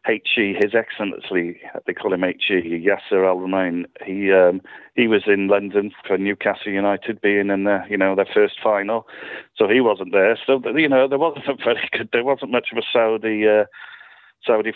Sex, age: male, 40-59